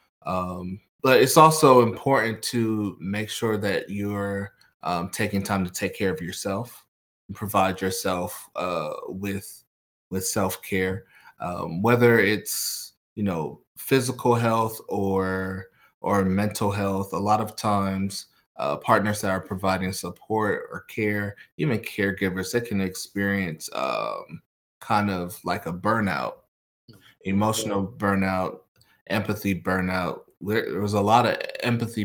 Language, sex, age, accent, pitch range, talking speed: English, male, 20-39, American, 95-105 Hz, 130 wpm